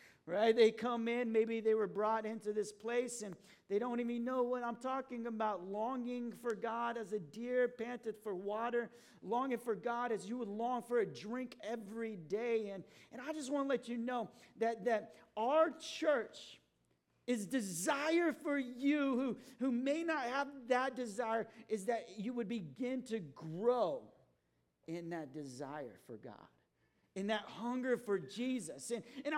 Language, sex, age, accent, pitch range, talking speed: English, male, 40-59, American, 215-255 Hz, 170 wpm